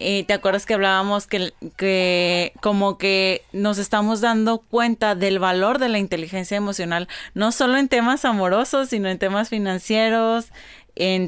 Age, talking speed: 30-49, 155 wpm